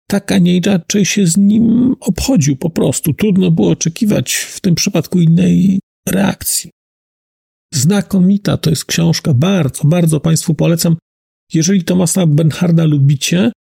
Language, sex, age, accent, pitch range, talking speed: Polish, male, 40-59, native, 155-195 Hz, 125 wpm